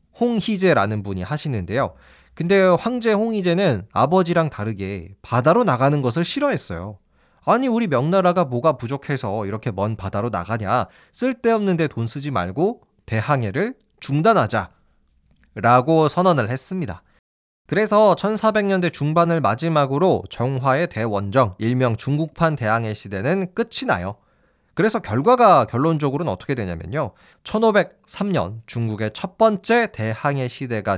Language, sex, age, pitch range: Korean, male, 20-39, 110-180 Hz